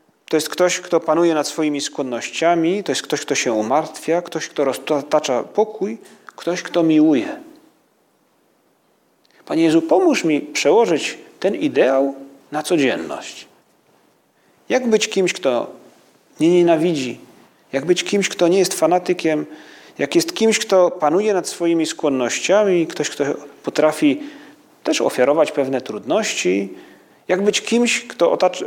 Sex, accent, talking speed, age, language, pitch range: male, native, 130 wpm, 40-59, Polish, 145-210 Hz